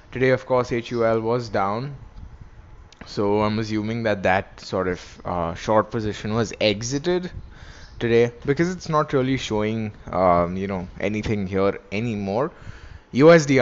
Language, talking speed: English, 135 wpm